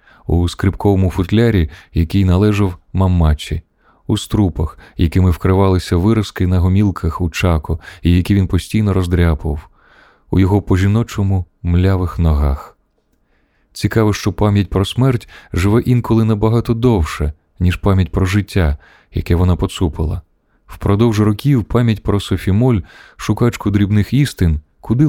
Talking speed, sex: 120 wpm, male